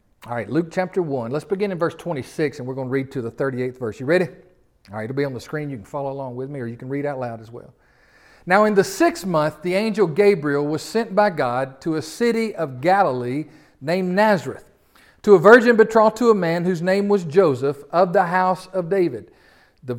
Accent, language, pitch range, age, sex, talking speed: American, English, 150-210 Hz, 50-69, male, 235 wpm